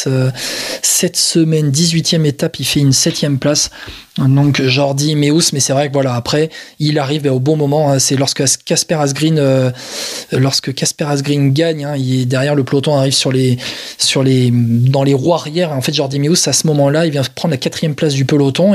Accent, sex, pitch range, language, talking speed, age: French, male, 140-165 Hz, French, 210 wpm, 20-39